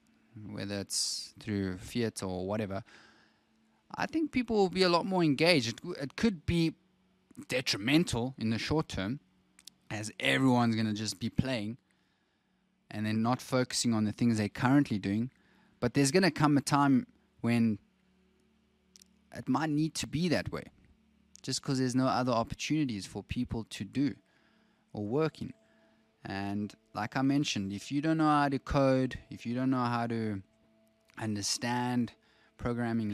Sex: male